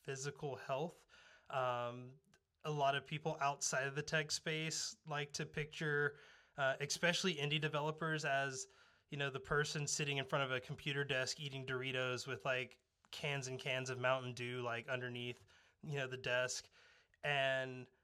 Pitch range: 130-155 Hz